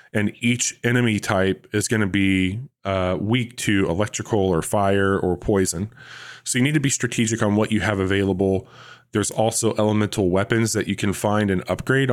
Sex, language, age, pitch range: male, English, 20-39, 95-120 Hz